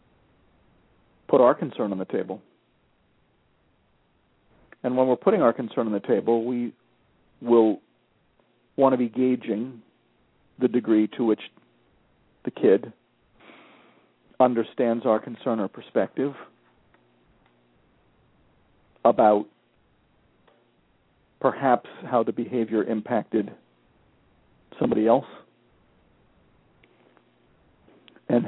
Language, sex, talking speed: English, male, 85 wpm